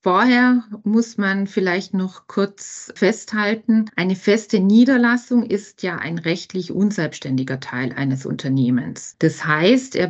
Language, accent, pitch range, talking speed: German, German, 160-220 Hz, 125 wpm